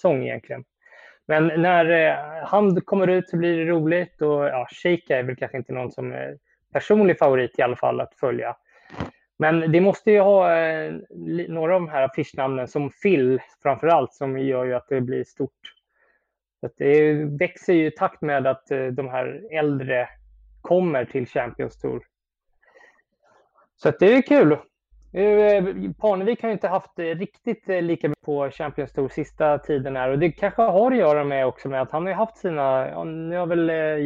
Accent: Swedish